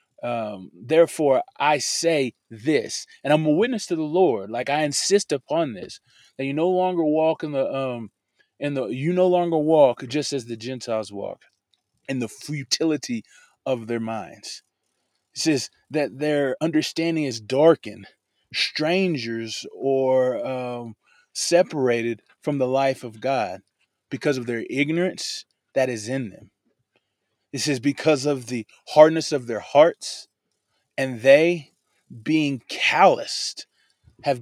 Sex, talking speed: male, 140 wpm